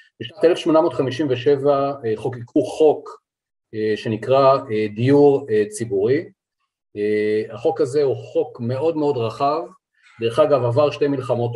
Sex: male